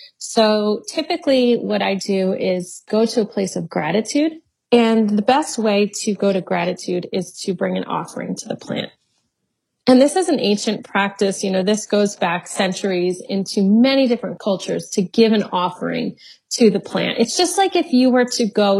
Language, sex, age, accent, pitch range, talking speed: English, female, 30-49, American, 185-225 Hz, 190 wpm